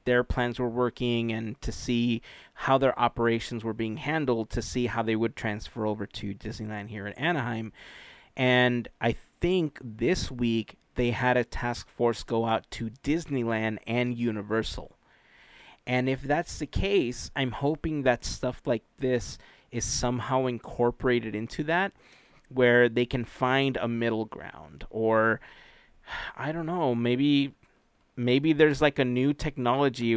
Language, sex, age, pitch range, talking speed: English, male, 30-49, 115-130 Hz, 150 wpm